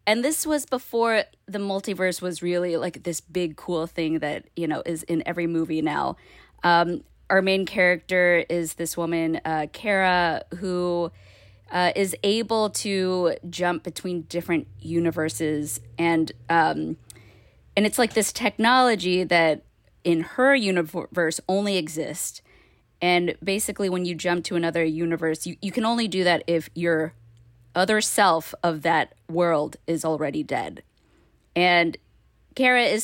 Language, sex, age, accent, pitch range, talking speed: English, female, 20-39, American, 165-195 Hz, 145 wpm